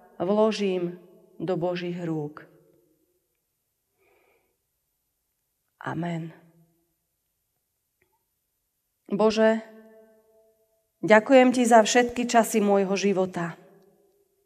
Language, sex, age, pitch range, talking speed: Slovak, female, 40-59, 185-225 Hz, 55 wpm